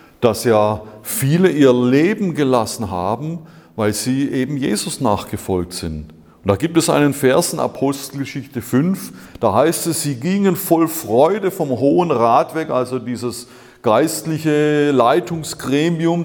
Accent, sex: German, male